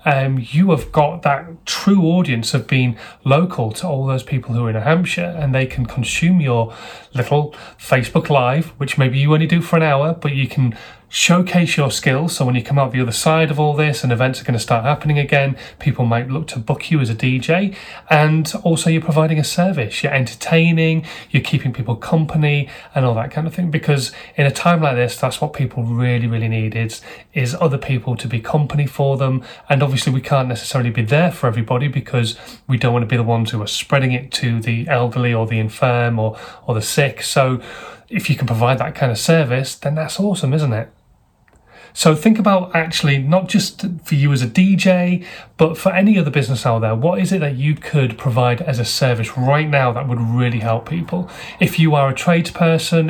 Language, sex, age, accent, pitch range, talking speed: English, male, 30-49, British, 125-160 Hz, 220 wpm